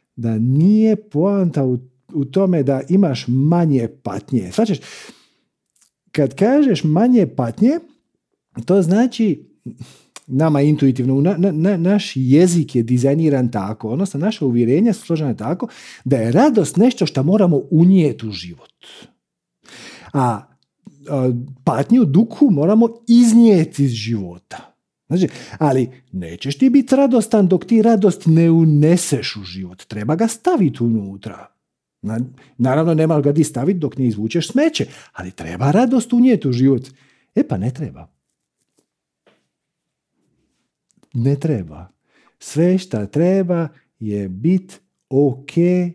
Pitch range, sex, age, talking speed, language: 125-200 Hz, male, 50-69, 120 wpm, Croatian